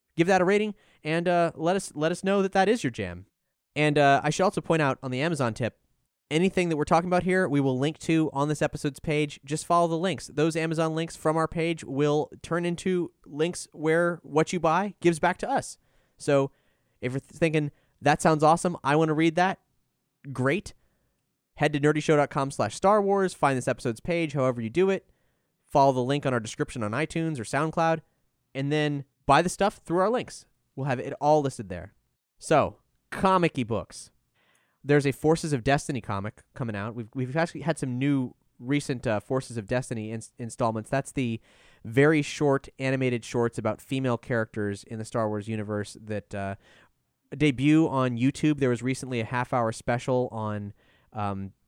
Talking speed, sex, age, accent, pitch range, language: 190 wpm, male, 20-39, American, 120-160 Hz, English